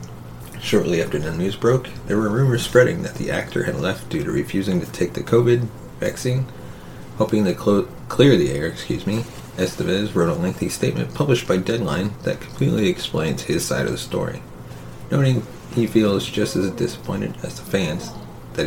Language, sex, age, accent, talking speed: English, male, 30-49, American, 180 wpm